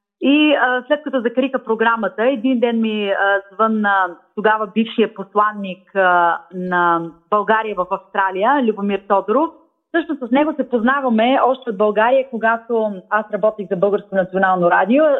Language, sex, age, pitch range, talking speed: Bulgarian, female, 30-49, 195-265 Hz, 145 wpm